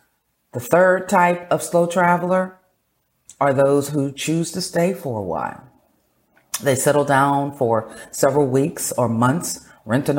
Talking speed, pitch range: 145 wpm, 120-150 Hz